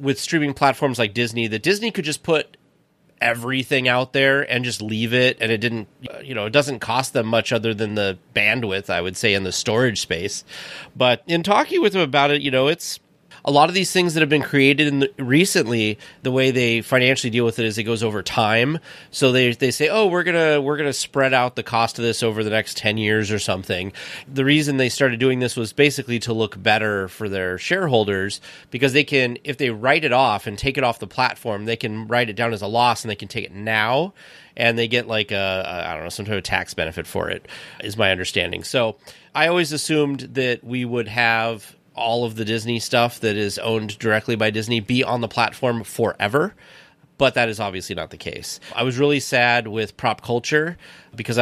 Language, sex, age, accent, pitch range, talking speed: English, male, 30-49, American, 110-140 Hz, 225 wpm